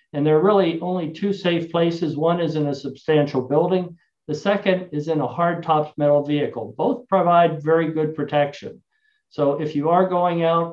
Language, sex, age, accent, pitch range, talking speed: English, male, 50-69, American, 145-180 Hz, 190 wpm